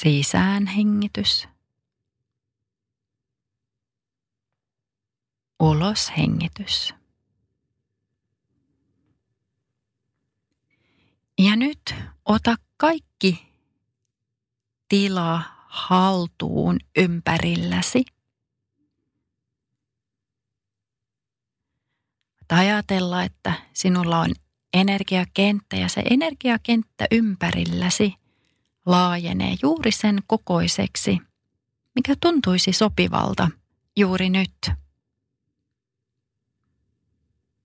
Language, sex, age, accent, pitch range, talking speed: Finnish, female, 30-49, native, 115-185 Hz, 45 wpm